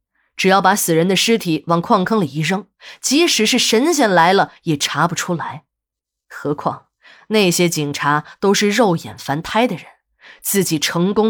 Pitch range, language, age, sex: 165-235 Hz, Chinese, 20-39, female